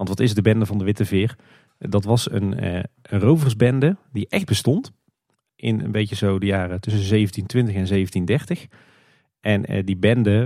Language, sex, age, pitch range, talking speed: Dutch, male, 40-59, 95-115 Hz, 185 wpm